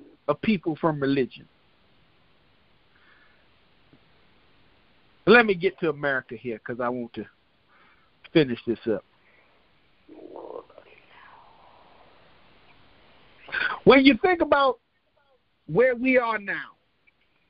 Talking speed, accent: 80 wpm, American